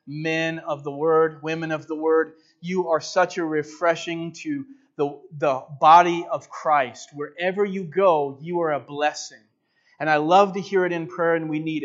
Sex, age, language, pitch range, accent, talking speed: male, 30-49, English, 145-170 Hz, American, 185 wpm